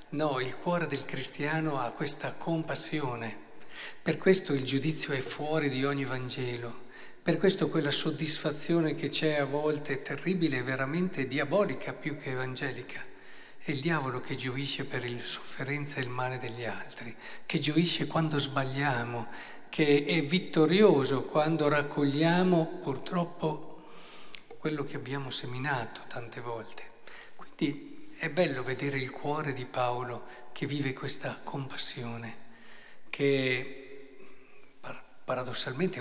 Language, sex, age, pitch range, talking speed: Italian, male, 50-69, 130-155 Hz, 125 wpm